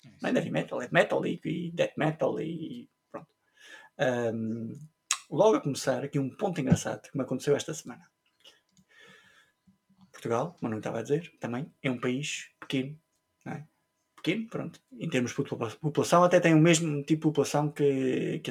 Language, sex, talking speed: Portuguese, male, 160 wpm